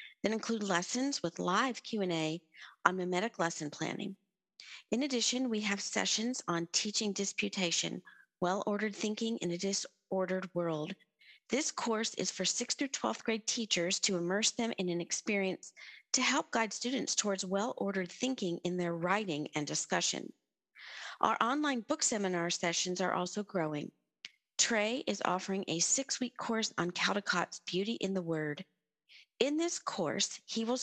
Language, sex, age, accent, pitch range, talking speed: English, female, 40-59, American, 180-235 Hz, 150 wpm